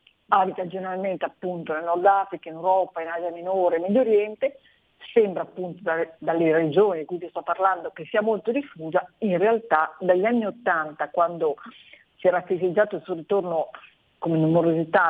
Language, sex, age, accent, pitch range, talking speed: Italian, female, 40-59, native, 160-195 Hz, 160 wpm